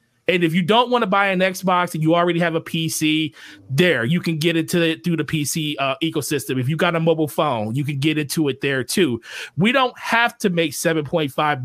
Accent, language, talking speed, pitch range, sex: American, English, 230 wpm, 160-205 Hz, male